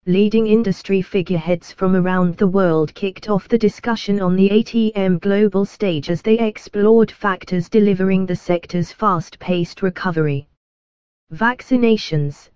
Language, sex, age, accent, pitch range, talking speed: English, female, 20-39, British, 170-210 Hz, 125 wpm